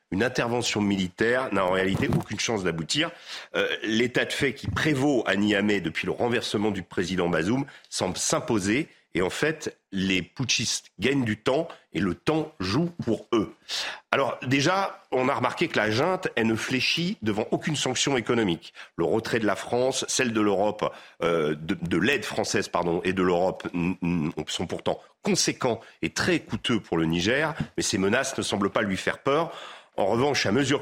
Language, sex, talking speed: French, male, 180 wpm